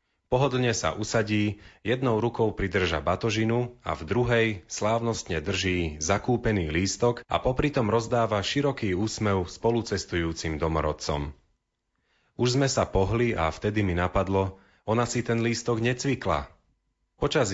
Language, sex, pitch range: Slovak, male, 85-115 Hz